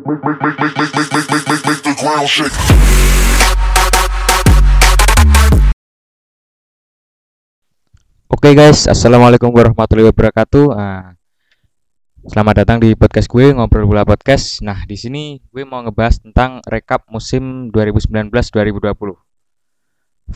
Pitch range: 105-120 Hz